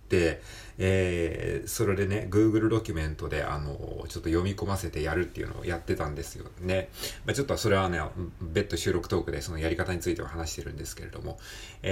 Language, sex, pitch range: Japanese, male, 85-115 Hz